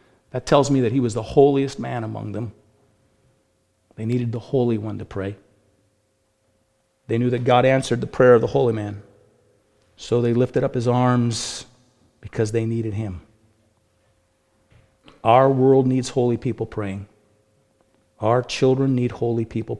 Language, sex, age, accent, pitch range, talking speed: English, male, 40-59, American, 110-130 Hz, 150 wpm